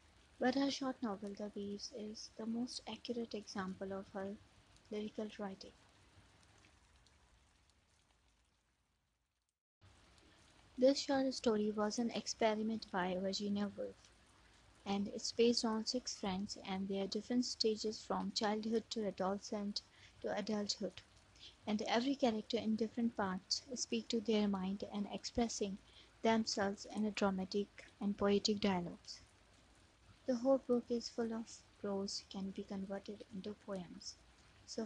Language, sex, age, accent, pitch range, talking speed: English, female, 20-39, Indian, 185-225 Hz, 125 wpm